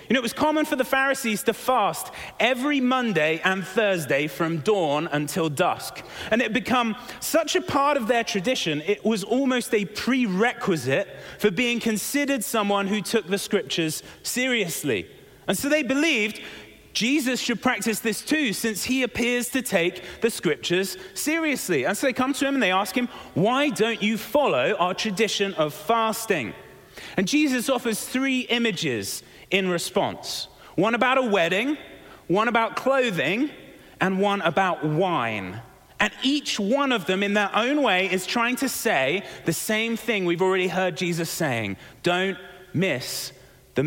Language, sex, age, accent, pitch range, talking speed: English, male, 30-49, British, 185-255 Hz, 165 wpm